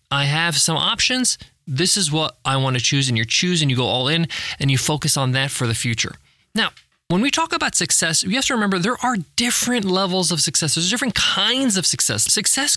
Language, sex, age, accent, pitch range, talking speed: English, male, 20-39, American, 135-210 Hz, 230 wpm